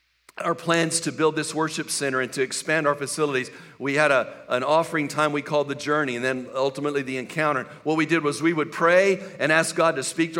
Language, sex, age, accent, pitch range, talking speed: English, male, 50-69, American, 145-170 Hz, 230 wpm